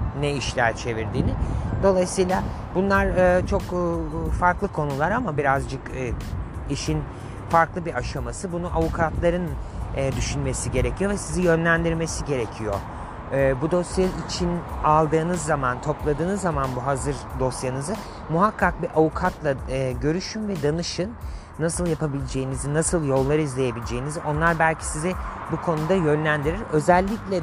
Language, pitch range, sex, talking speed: Turkish, 115-160 Hz, male, 110 wpm